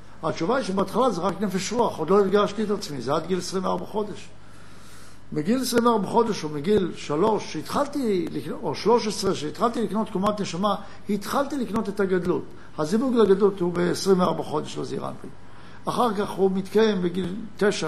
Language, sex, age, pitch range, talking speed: Hebrew, male, 60-79, 175-225 Hz, 155 wpm